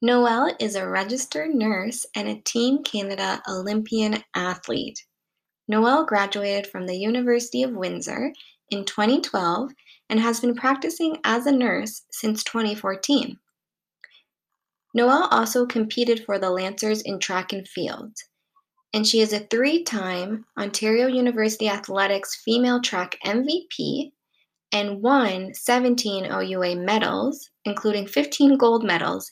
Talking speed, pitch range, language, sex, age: 120 wpm, 205-260 Hz, English, female, 20-39